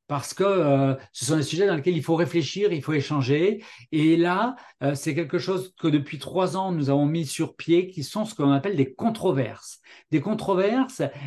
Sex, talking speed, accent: male, 210 wpm, French